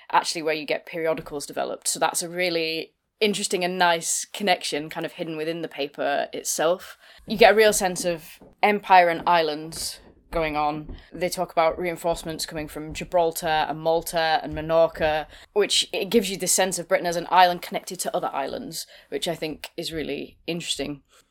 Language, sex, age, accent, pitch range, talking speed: English, female, 20-39, British, 155-180 Hz, 180 wpm